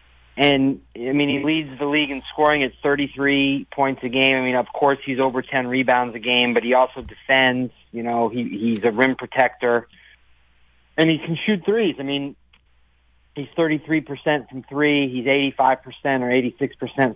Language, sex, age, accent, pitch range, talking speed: English, male, 40-59, American, 120-145 Hz, 175 wpm